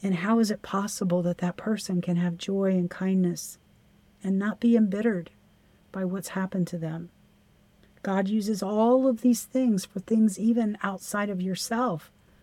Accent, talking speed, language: American, 165 wpm, English